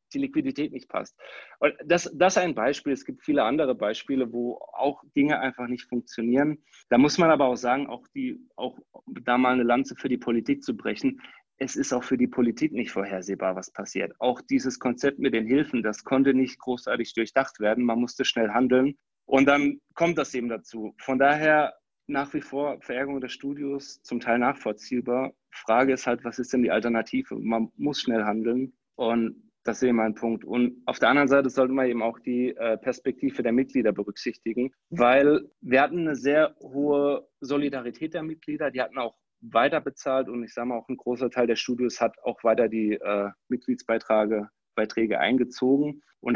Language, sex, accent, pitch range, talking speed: German, male, German, 115-145 Hz, 190 wpm